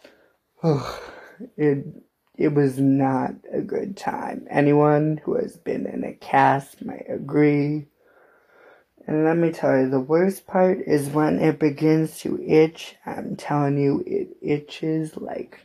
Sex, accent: male, American